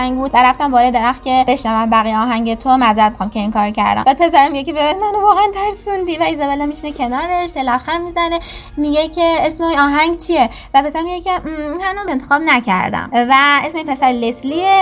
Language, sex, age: Persian, female, 20-39